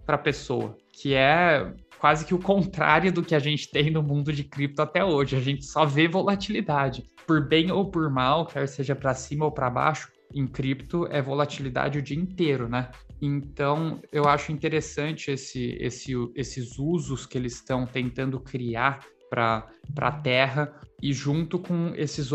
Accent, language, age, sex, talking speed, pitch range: Brazilian, Portuguese, 20-39, male, 170 wpm, 130-155 Hz